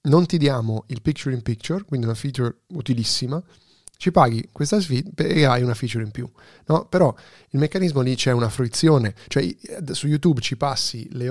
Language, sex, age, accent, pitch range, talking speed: Italian, male, 30-49, native, 115-140 Hz, 185 wpm